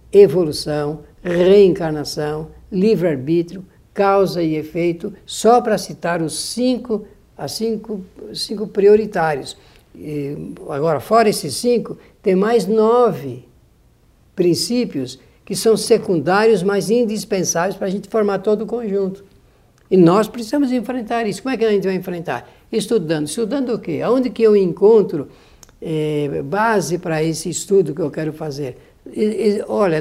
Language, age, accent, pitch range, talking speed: Portuguese, 60-79, Brazilian, 160-220 Hz, 130 wpm